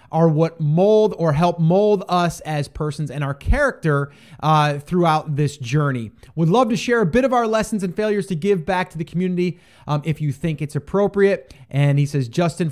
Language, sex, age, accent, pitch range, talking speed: English, male, 30-49, American, 145-195 Hz, 205 wpm